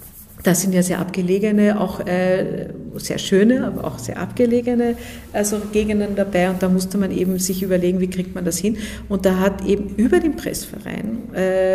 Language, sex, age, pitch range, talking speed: German, female, 50-69, 185-210 Hz, 170 wpm